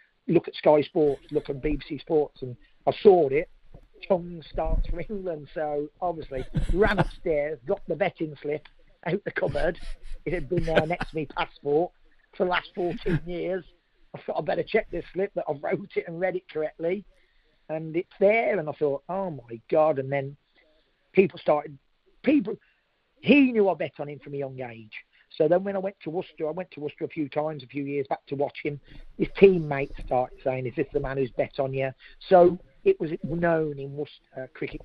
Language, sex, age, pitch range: English, male, 40-59, 135-175 Hz